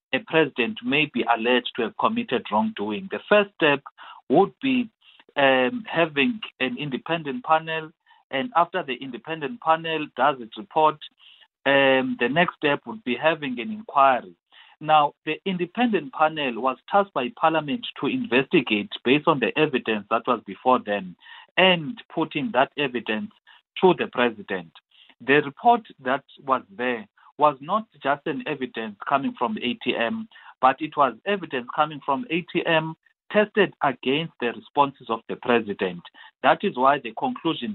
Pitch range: 125-165 Hz